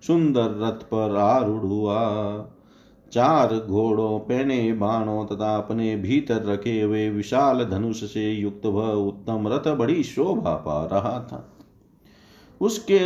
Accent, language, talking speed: native, Hindi, 125 wpm